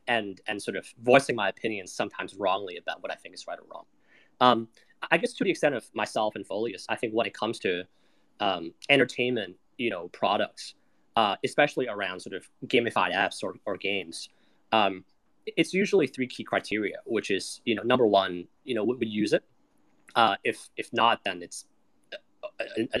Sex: male